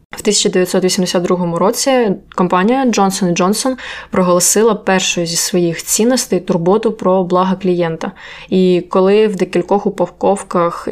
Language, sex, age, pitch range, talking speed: Ukrainian, female, 20-39, 175-205 Hz, 110 wpm